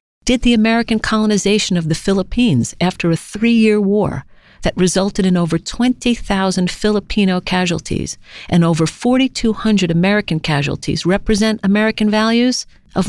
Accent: American